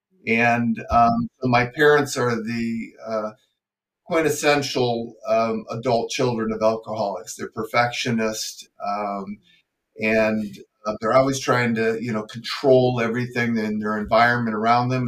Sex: male